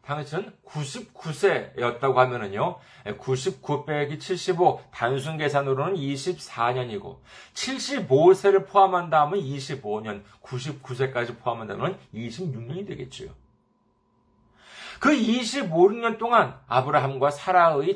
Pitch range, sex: 135-200 Hz, male